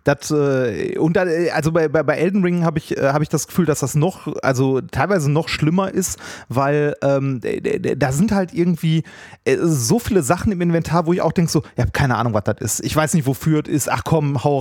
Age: 30-49